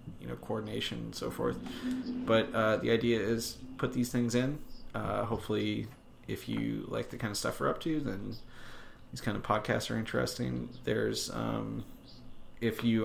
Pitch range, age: 100-115 Hz, 30-49